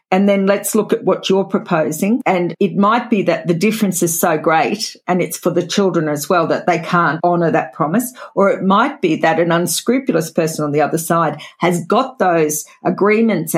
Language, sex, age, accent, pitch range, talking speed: English, female, 50-69, Australian, 170-210 Hz, 210 wpm